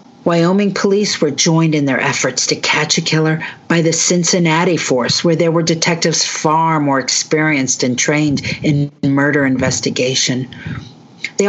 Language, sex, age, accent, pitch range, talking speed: English, female, 50-69, American, 140-190 Hz, 145 wpm